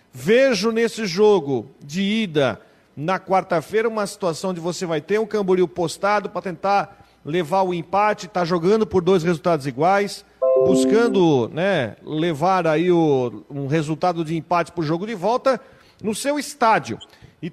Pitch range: 175-215 Hz